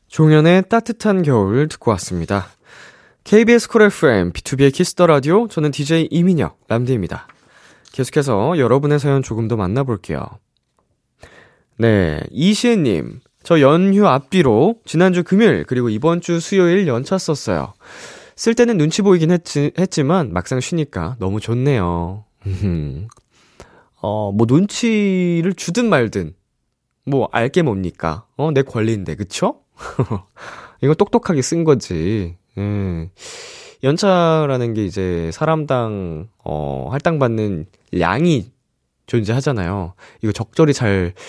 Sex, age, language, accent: male, 20-39, Korean, native